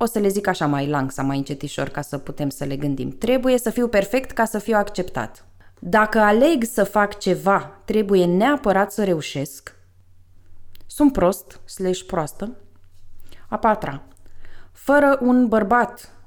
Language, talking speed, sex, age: Romanian, 155 wpm, female, 20-39